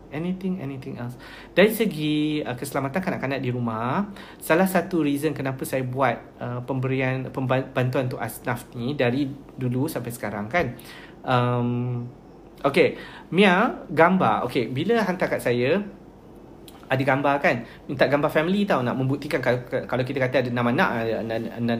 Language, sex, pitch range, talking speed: Malay, male, 130-180 Hz, 140 wpm